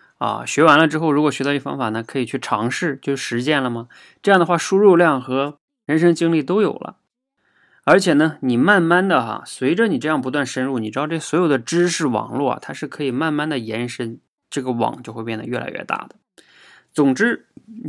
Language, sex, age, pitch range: Chinese, male, 20-39, 115-170 Hz